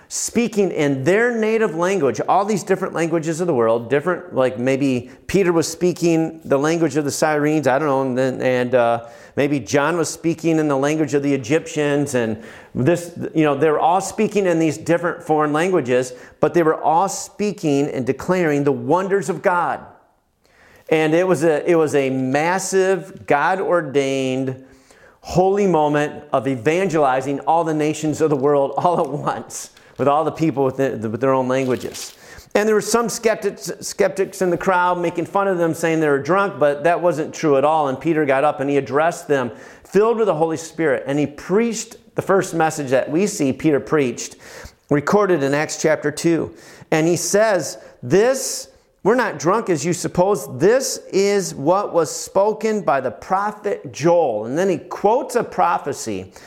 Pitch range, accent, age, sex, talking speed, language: 140-190 Hz, American, 40-59, male, 180 wpm, English